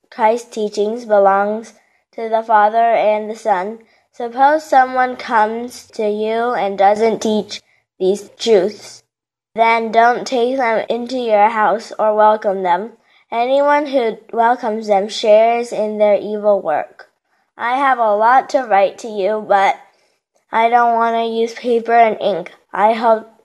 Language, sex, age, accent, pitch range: Korean, female, 10-29, American, 210-240 Hz